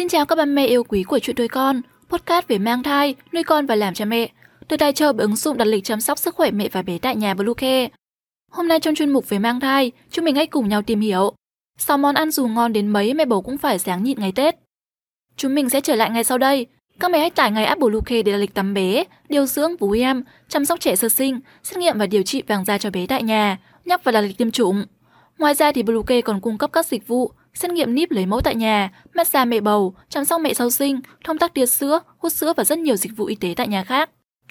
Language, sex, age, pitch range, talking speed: Vietnamese, female, 10-29, 215-300 Hz, 275 wpm